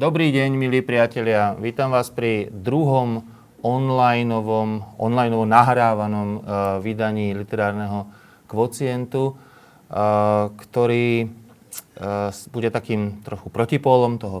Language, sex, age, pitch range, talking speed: Slovak, male, 30-49, 95-115 Hz, 90 wpm